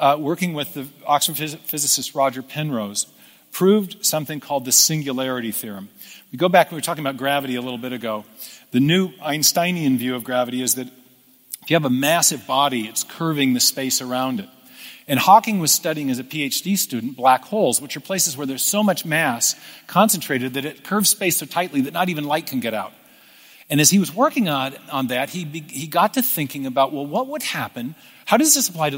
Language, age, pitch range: English, 50-69, 135-195 Hz